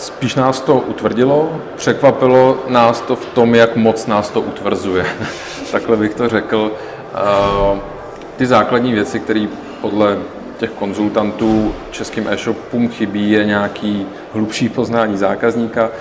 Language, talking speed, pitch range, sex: Czech, 125 wpm, 110-120 Hz, male